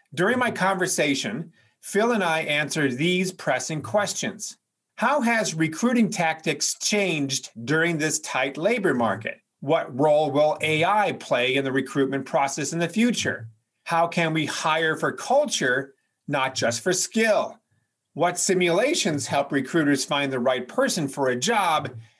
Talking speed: 145 wpm